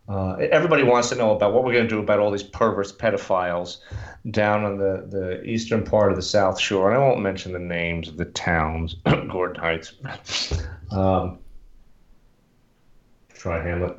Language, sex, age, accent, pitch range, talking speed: English, male, 40-59, American, 95-120 Hz, 165 wpm